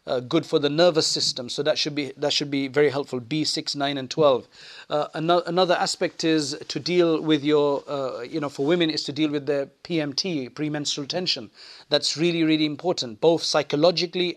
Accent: South African